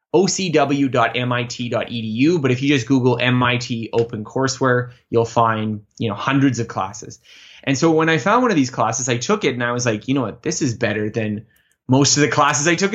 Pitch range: 120-150 Hz